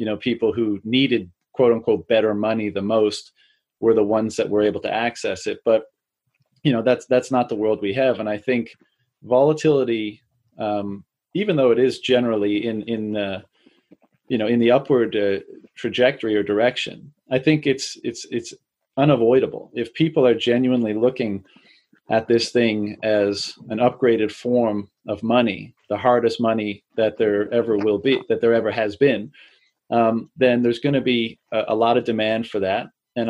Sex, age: male, 30-49